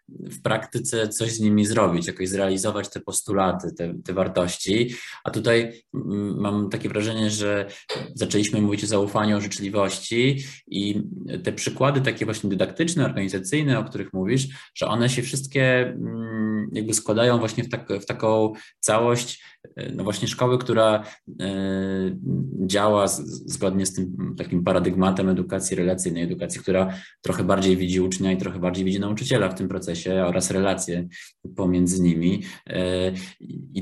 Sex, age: male, 20-39